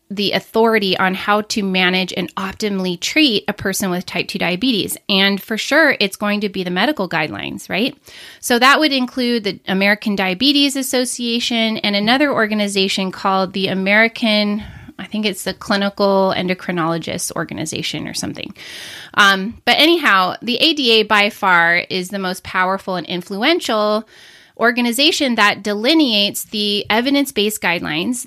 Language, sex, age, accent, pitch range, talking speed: English, female, 20-39, American, 190-245 Hz, 145 wpm